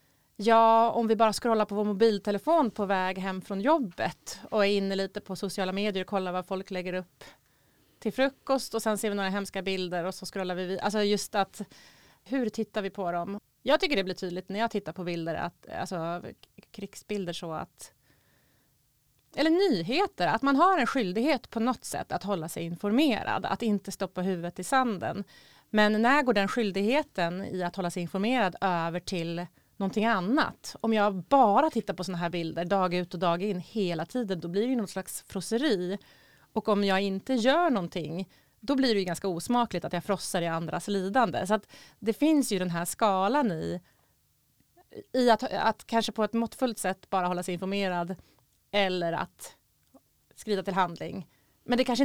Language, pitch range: Swedish, 180-225 Hz